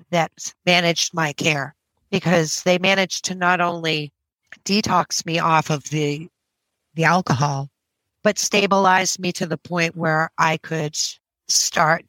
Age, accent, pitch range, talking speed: 40-59, American, 155-195 Hz, 135 wpm